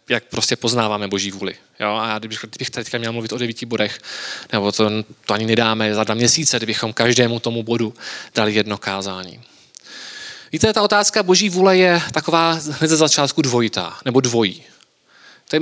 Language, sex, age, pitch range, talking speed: Czech, male, 20-39, 130-170 Hz, 170 wpm